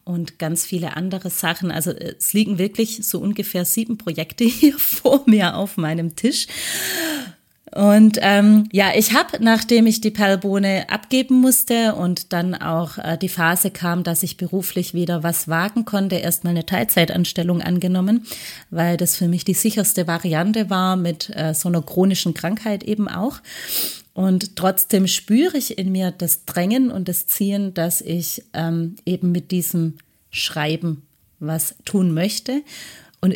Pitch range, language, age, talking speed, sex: 170-215 Hz, German, 30-49, 155 wpm, female